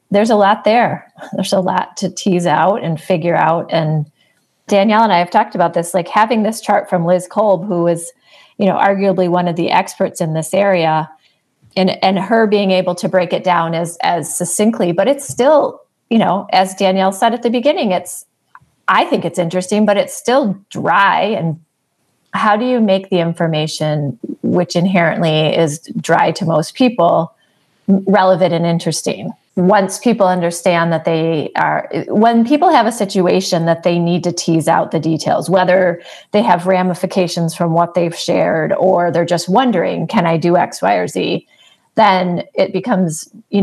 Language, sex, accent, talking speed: English, female, American, 180 wpm